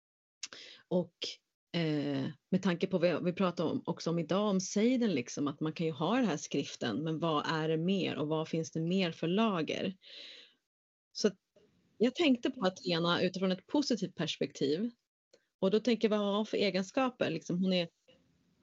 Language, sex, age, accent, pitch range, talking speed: Swedish, female, 30-49, native, 165-205 Hz, 180 wpm